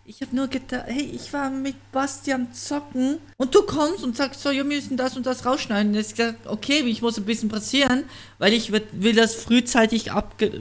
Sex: male